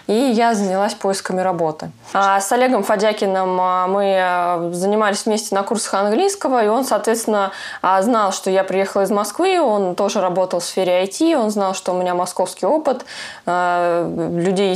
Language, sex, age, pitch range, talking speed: Russian, female, 20-39, 180-215 Hz, 155 wpm